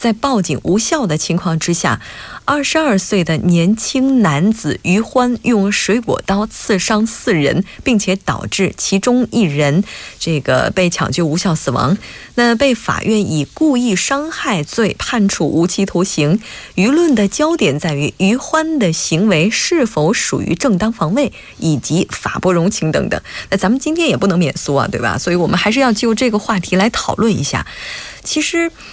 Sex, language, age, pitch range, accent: female, Korean, 20-39, 175-235 Hz, Chinese